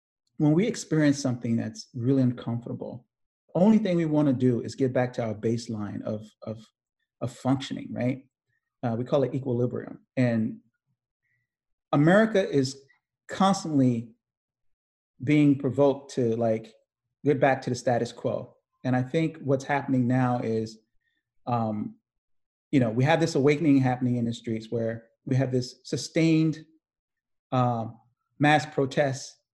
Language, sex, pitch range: English, male, 115-140 Hz